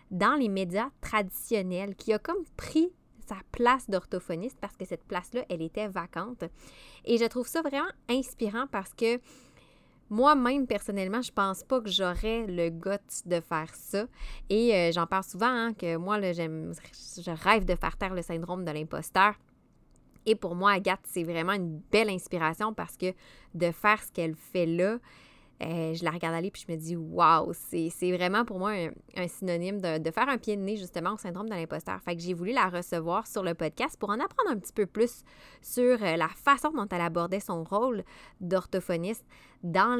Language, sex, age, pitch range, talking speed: French, female, 20-39, 175-230 Hz, 195 wpm